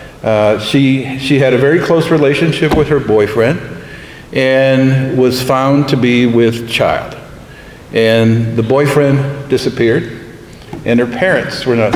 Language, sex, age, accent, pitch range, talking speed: English, male, 50-69, American, 130-155 Hz, 135 wpm